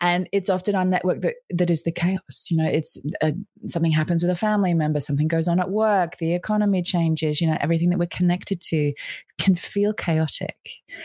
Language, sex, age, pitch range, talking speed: English, female, 20-39, 150-185 Hz, 200 wpm